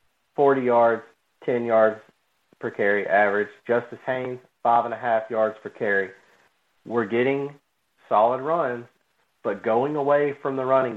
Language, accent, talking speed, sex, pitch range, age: English, American, 140 wpm, male, 120-165 Hz, 40-59